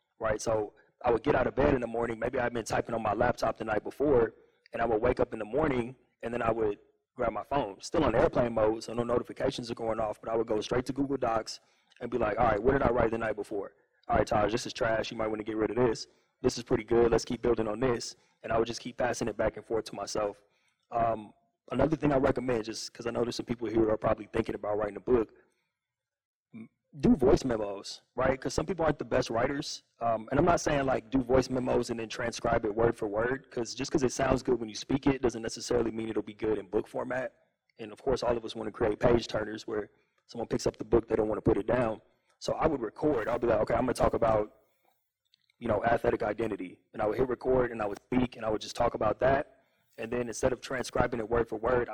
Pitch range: 110-130 Hz